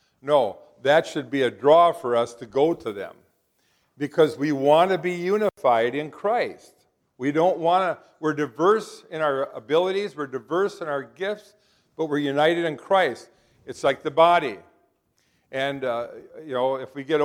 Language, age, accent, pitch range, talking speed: English, 50-69, American, 130-170 Hz, 175 wpm